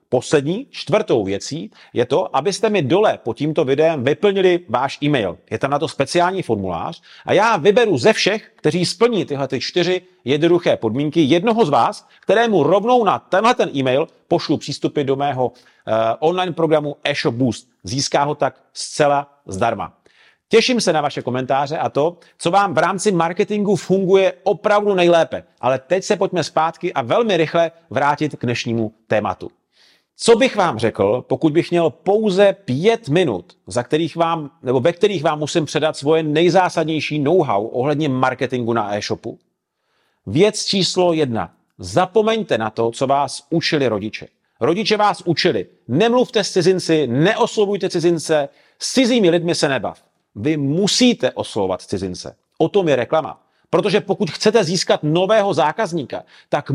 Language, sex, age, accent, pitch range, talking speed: Czech, male, 40-59, native, 140-195 Hz, 155 wpm